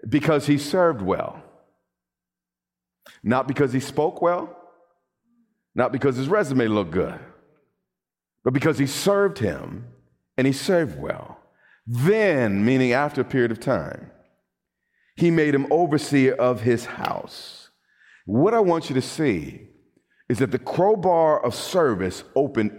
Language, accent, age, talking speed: English, American, 40-59, 135 wpm